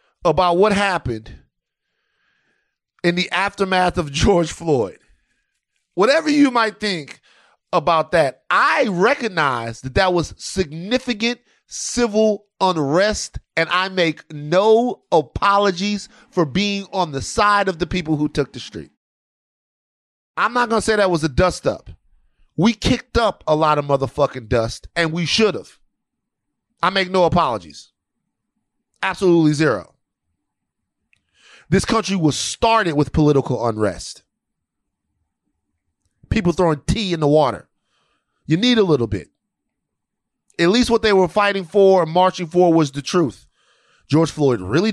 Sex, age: male, 30-49